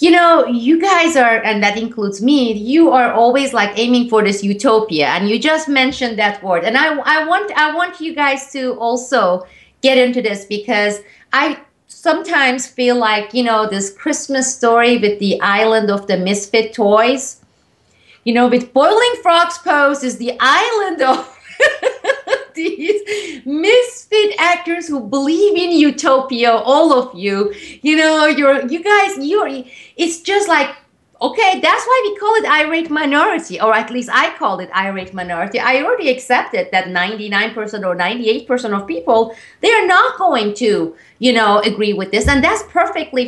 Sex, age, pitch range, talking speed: female, 30-49, 215-315 Hz, 165 wpm